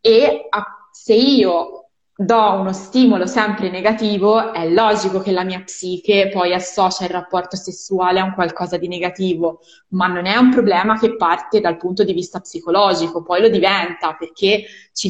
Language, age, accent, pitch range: Italian, 20-39, native, 180-220 Hz